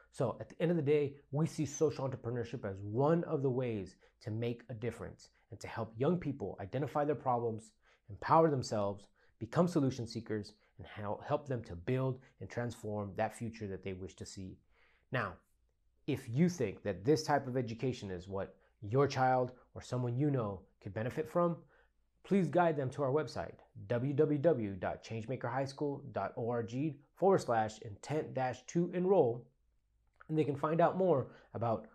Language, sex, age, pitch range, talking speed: English, male, 30-49, 110-150 Hz, 160 wpm